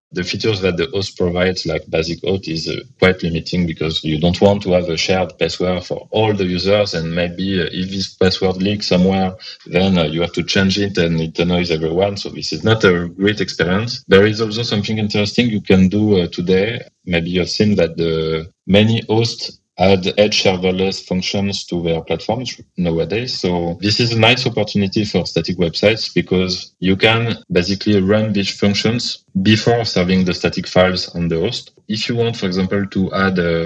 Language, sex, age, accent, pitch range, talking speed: English, male, 20-39, French, 90-105 Hz, 195 wpm